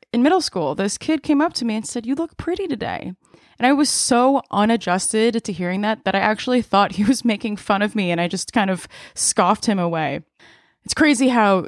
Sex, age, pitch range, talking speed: female, 20-39, 185-235 Hz, 225 wpm